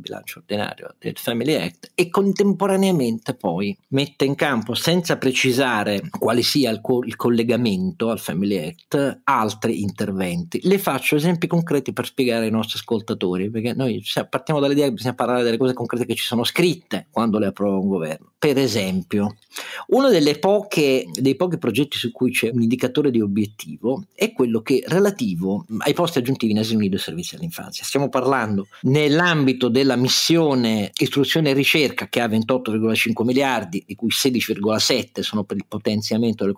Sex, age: male, 40-59